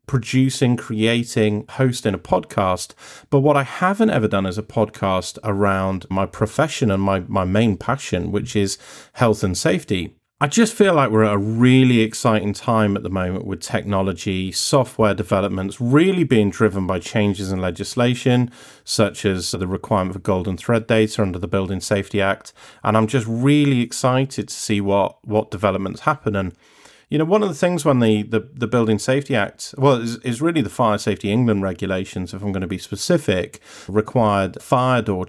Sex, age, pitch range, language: male, 40-59, 100-130 Hz, English